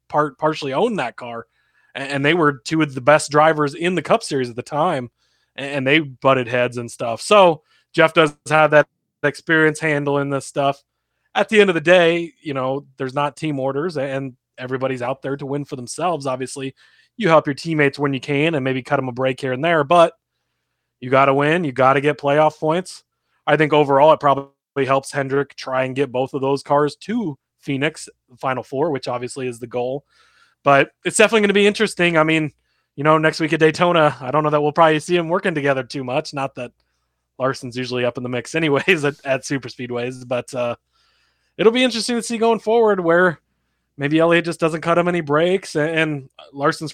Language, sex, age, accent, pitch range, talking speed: English, male, 20-39, American, 130-160 Hz, 210 wpm